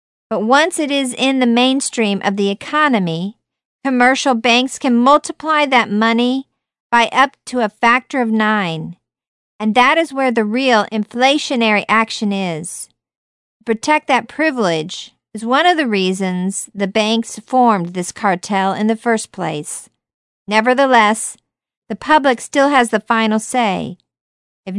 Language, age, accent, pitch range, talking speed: English, 50-69, American, 200-255 Hz, 145 wpm